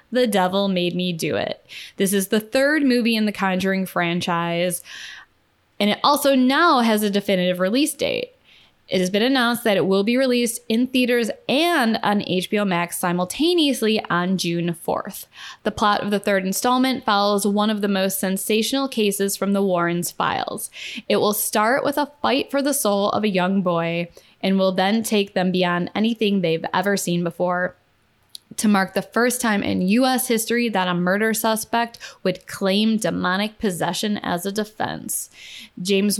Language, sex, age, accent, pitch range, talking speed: English, female, 10-29, American, 185-225 Hz, 170 wpm